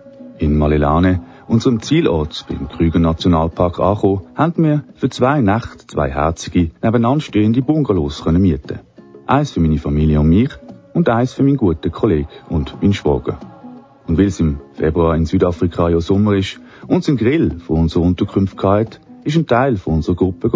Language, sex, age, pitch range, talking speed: German, male, 40-59, 85-115 Hz, 170 wpm